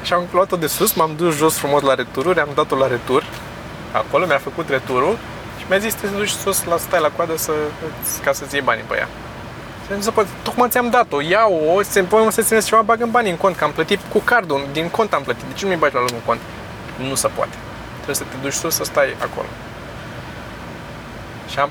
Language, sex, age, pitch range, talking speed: Romanian, male, 20-39, 135-185 Hz, 230 wpm